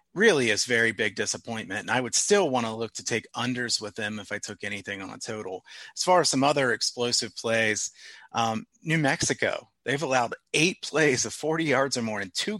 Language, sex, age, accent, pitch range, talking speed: English, male, 30-49, American, 105-130 Hz, 210 wpm